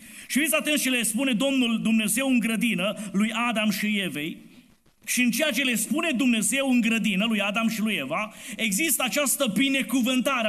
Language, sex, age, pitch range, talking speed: Romanian, male, 30-49, 215-260 Hz, 175 wpm